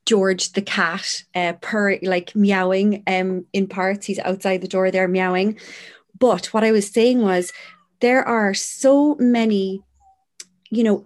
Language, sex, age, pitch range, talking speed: English, female, 30-49, 190-240 Hz, 150 wpm